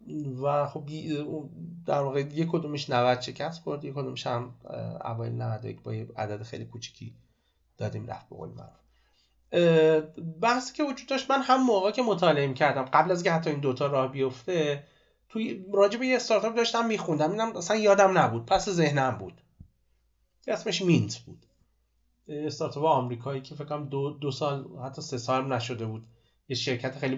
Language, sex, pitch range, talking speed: Persian, male, 120-170 Hz, 155 wpm